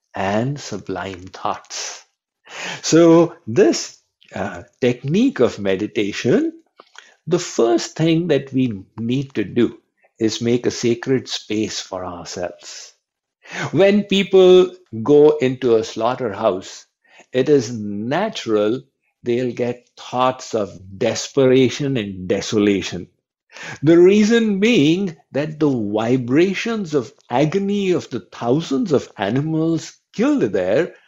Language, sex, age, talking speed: Hindi, male, 60-79, 105 wpm